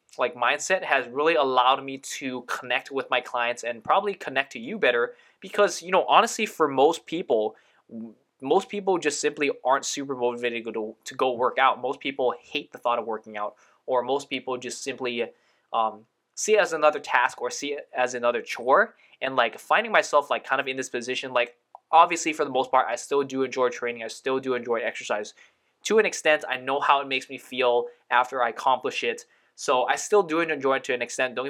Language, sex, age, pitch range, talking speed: English, male, 20-39, 120-145 Hz, 210 wpm